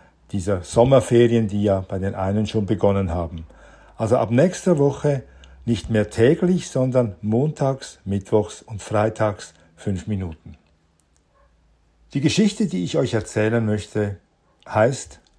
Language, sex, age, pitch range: German, male, 50-69, 105-150 Hz